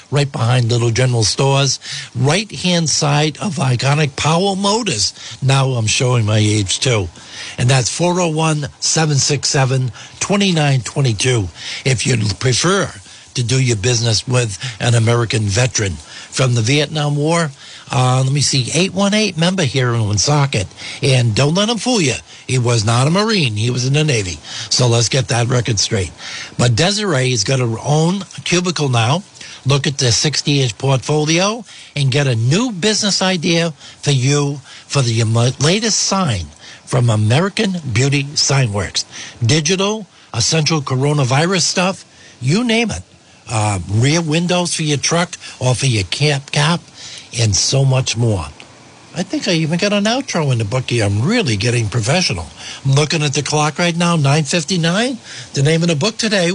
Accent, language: American, English